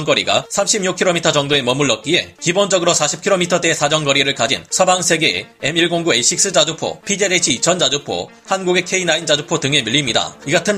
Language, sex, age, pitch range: Korean, male, 30-49, 145-185 Hz